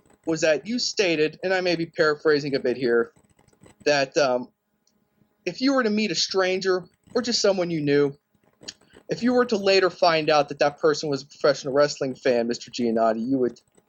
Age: 30-49